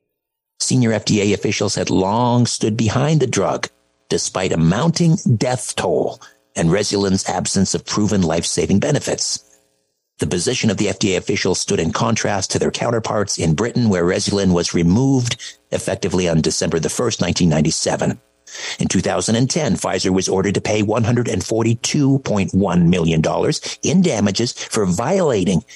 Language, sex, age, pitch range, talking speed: English, male, 50-69, 85-125 Hz, 150 wpm